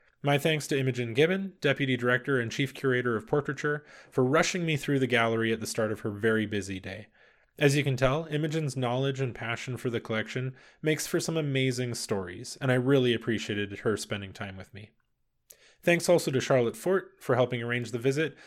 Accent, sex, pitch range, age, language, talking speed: American, male, 115-150 Hz, 20-39, English, 200 wpm